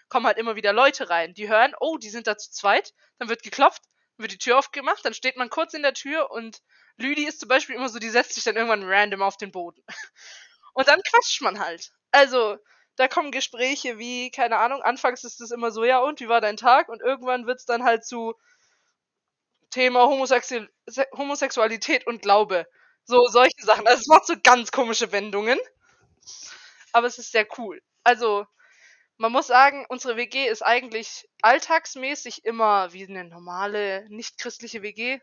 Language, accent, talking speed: German, German, 185 wpm